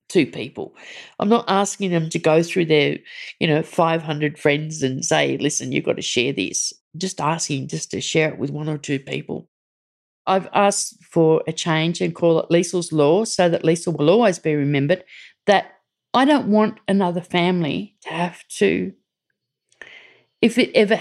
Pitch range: 150-205 Hz